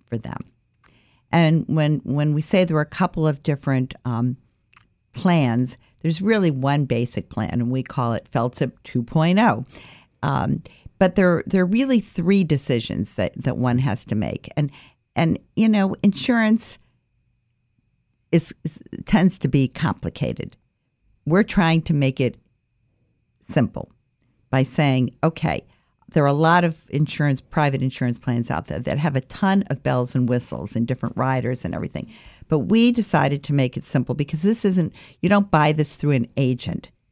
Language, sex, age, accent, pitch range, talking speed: English, female, 50-69, American, 125-165 Hz, 160 wpm